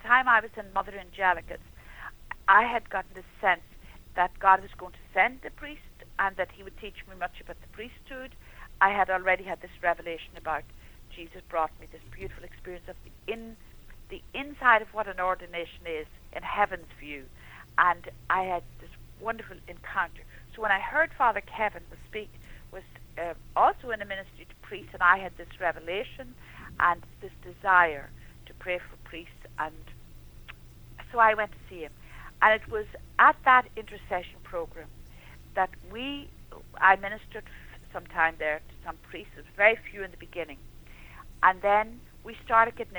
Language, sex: English, female